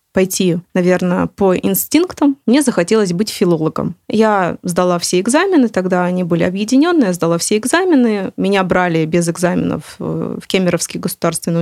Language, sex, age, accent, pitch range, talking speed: Russian, female, 20-39, native, 180-240 Hz, 140 wpm